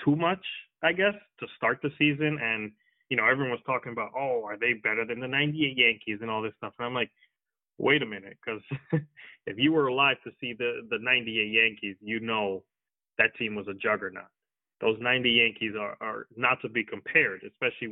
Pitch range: 110-145 Hz